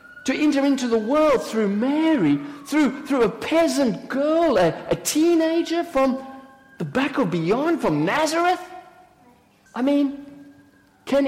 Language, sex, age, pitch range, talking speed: English, male, 50-69, 230-295 Hz, 135 wpm